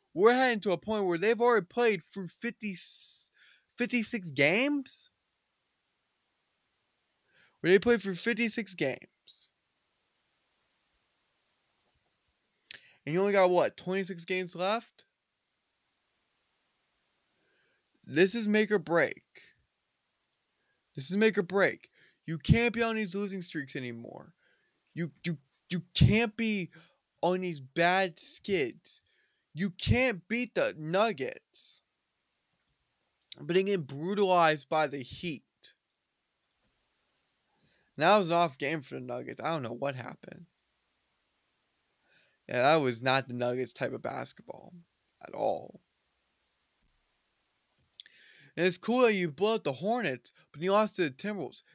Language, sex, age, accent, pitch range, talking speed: English, male, 20-39, American, 160-215 Hz, 125 wpm